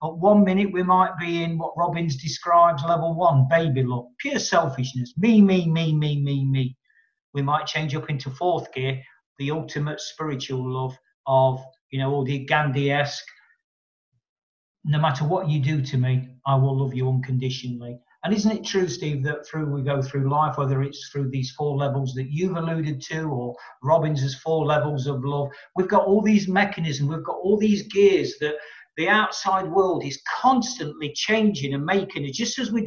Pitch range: 140-190 Hz